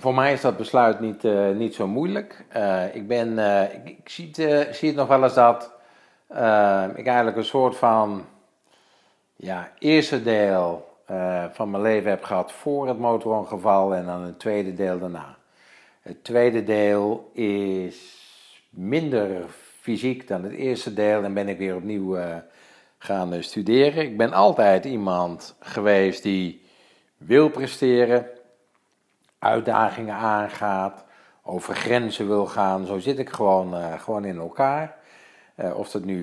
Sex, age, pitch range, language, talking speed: male, 50-69, 95-120 Hz, Dutch, 155 wpm